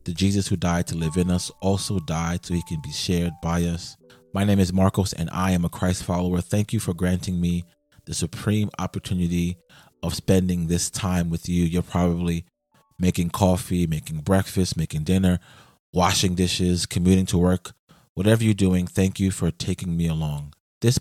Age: 30-49